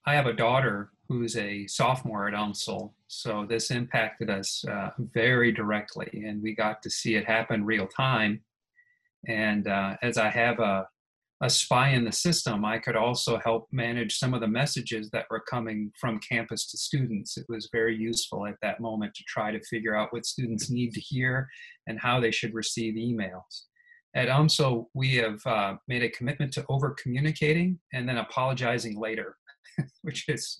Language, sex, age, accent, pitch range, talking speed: English, male, 40-59, American, 110-135 Hz, 180 wpm